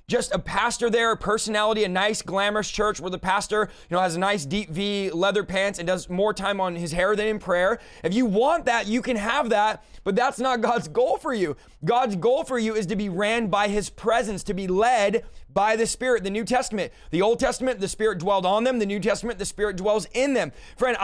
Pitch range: 205-245 Hz